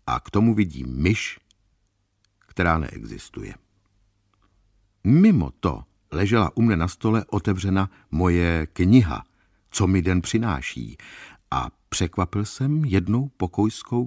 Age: 60-79